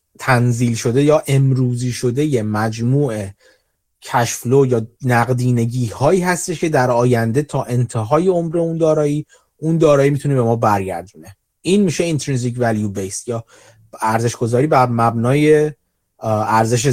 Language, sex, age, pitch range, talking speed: Persian, male, 30-49, 115-155 Hz, 130 wpm